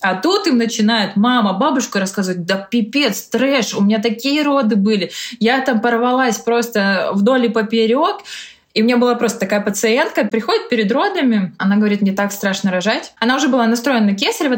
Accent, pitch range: native, 200-245 Hz